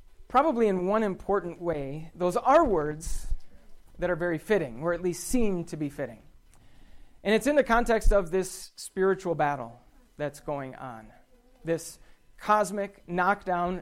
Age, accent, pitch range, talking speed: 40-59, American, 155-200 Hz, 150 wpm